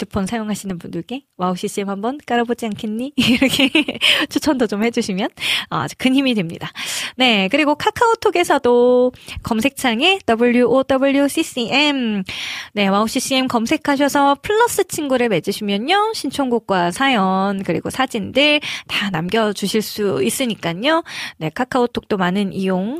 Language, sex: Korean, female